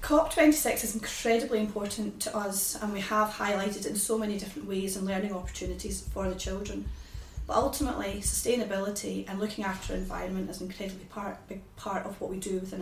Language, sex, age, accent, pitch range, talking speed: English, female, 30-49, British, 190-225 Hz, 190 wpm